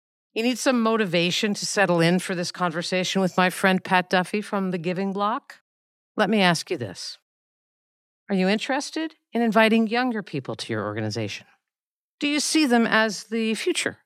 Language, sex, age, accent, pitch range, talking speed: English, female, 50-69, American, 165-240 Hz, 175 wpm